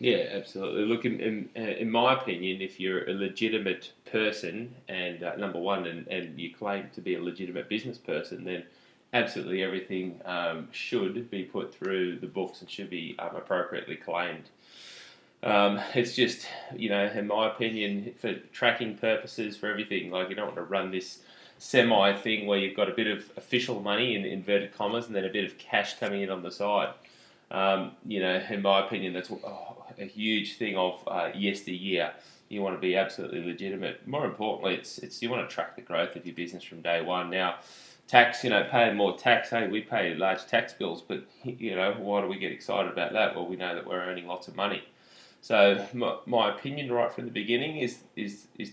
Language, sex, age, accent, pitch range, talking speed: English, male, 20-39, Australian, 90-110 Hz, 200 wpm